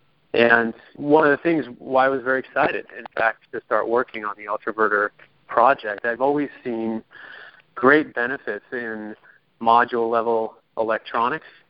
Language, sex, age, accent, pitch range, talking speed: English, male, 30-49, American, 110-120 Hz, 140 wpm